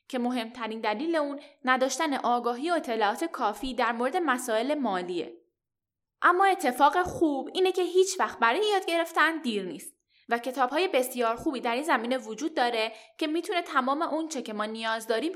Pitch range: 225-325 Hz